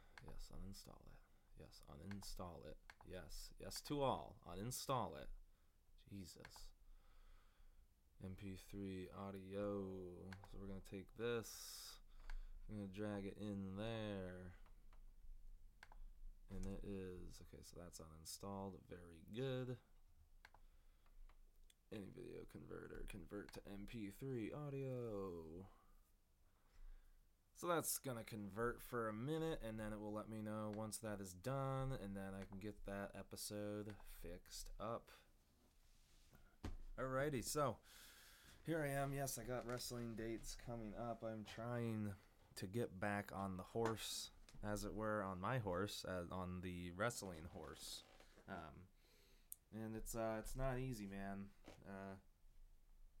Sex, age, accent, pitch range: male, 20-39, American, 90-110 Hz